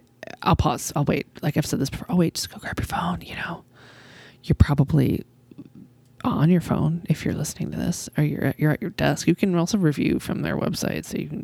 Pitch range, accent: 140-185 Hz, American